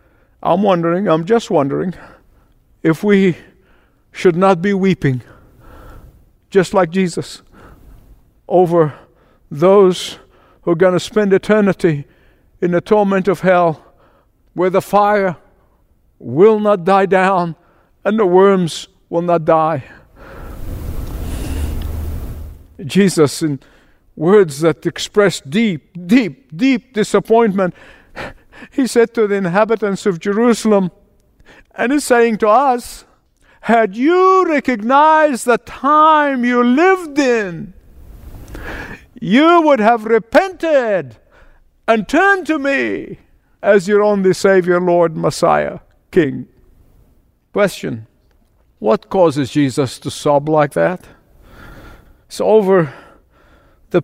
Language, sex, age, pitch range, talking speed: English, male, 50-69, 160-220 Hz, 105 wpm